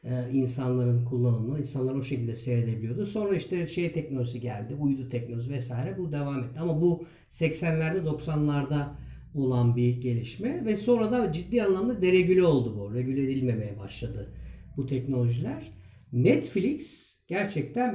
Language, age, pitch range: Turkish, 50-69, 125-170 Hz